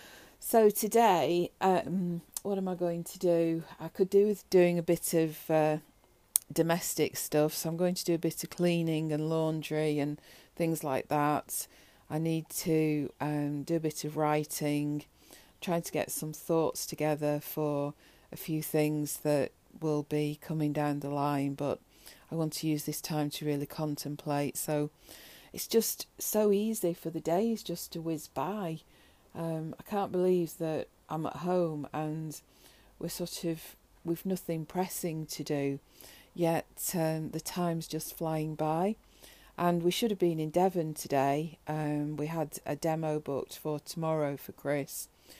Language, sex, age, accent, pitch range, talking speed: English, female, 40-59, British, 150-175 Hz, 165 wpm